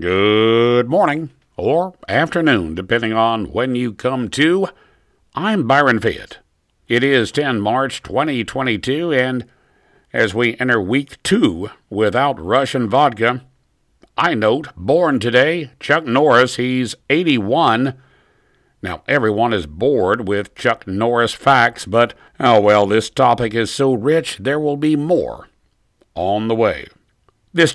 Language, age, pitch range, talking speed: English, 60-79, 110-135 Hz, 130 wpm